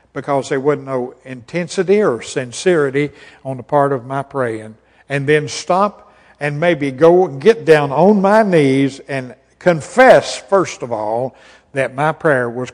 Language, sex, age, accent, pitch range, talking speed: English, male, 60-79, American, 125-160 Hz, 155 wpm